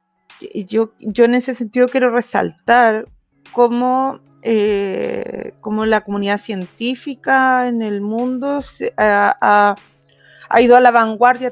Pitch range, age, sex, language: 200-240 Hz, 40-59, female, Spanish